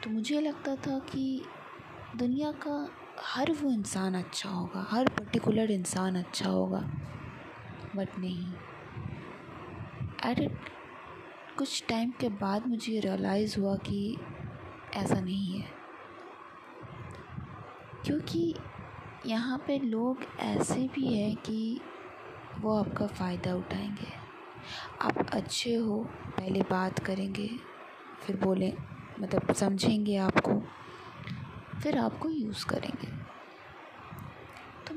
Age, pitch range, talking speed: 20-39, 185-240 Hz, 105 wpm